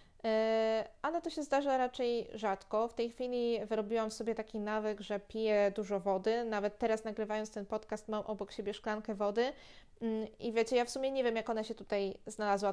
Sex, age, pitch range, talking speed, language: female, 20-39, 205-230 Hz, 185 wpm, Polish